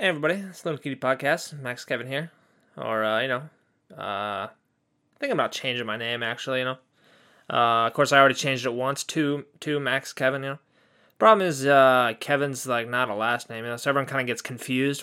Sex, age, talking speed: male, 20-39, 220 wpm